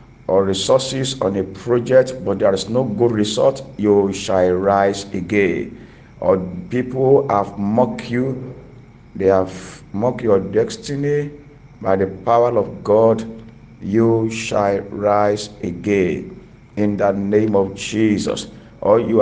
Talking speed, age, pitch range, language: 130 wpm, 50-69, 100-125 Hz, English